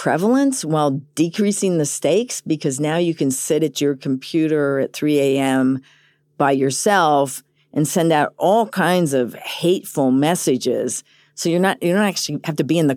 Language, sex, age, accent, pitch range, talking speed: English, female, 50-69, American, 140-185 Hz, 170 wpm